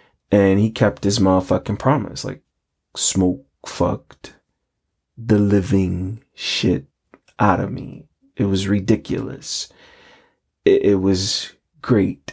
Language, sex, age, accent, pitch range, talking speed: English, male, 30-49, American, 95-120 Hz, 105 wpm